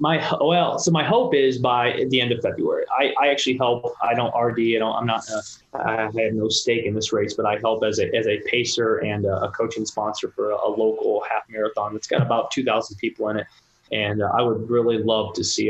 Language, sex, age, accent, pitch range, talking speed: English, male, 20-39, American, 110-155 Hz, 235 wpm